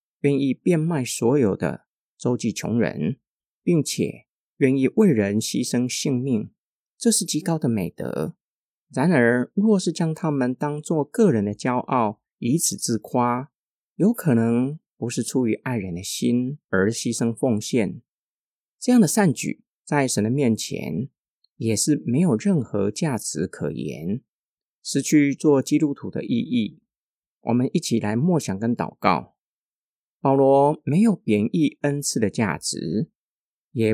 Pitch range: 120-160 Hz